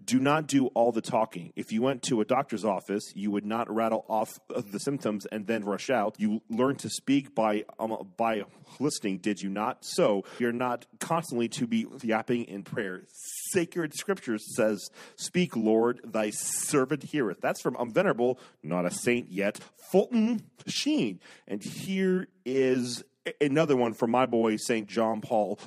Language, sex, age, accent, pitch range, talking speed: English, male, 40-59, American, 110-170 Hz, 170 wpm